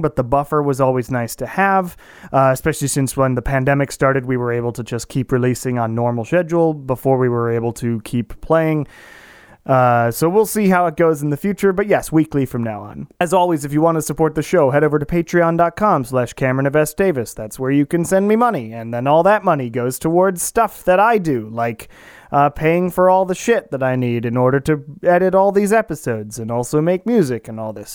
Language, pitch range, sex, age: English, 125-165 Hz, male, 30-49